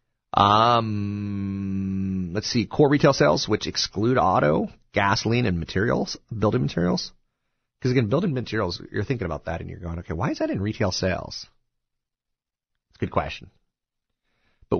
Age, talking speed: 30-49, 150 wpm